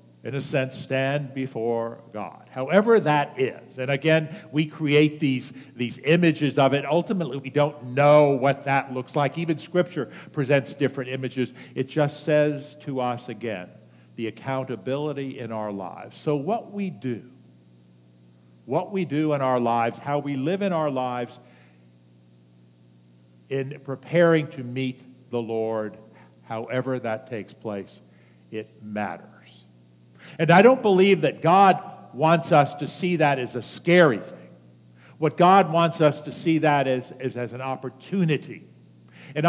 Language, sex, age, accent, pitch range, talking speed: English, male, 50-69, American, 110-160 Hz, 150 wpm